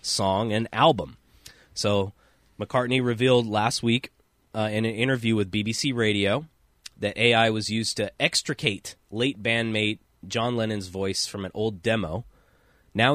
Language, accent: English, American